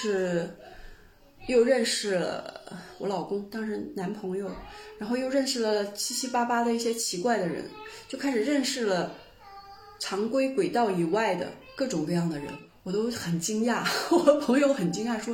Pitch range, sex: 185-285 Hz, female